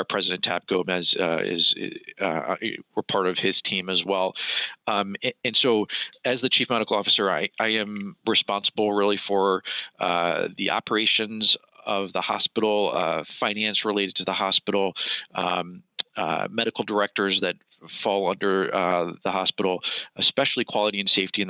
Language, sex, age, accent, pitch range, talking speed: English, male, 40-59, American, 90-110 Hz, 155 wpm